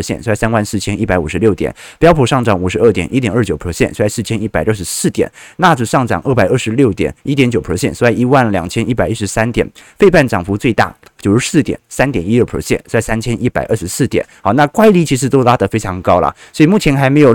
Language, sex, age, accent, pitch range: Chinese, male, 30-49, native, 105-145 Hz